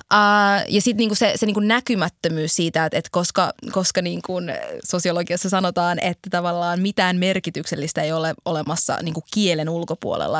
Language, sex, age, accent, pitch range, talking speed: Finnish, female, 20-39, native, 165-200 Hz, 150 wpm